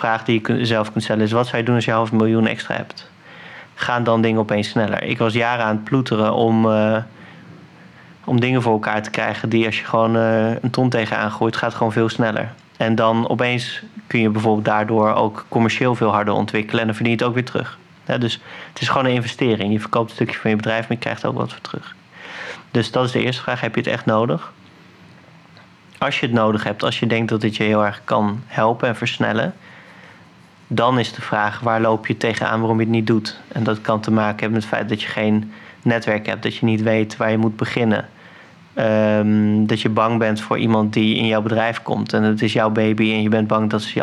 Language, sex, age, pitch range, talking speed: Dutch, male, 30-49, 110-120 Hz, 240 wpm